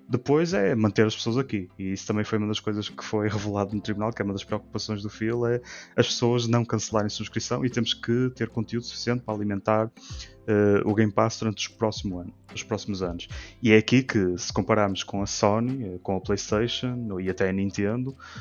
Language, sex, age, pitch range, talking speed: Portuguese, male, 20-39, 100-120 Hz, 210 wpm